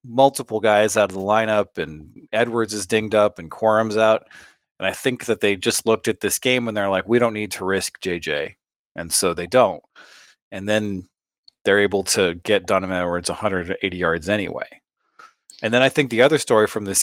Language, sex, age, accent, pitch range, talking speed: English, male, 40-59, American, 95-120 Hz, 200 wpm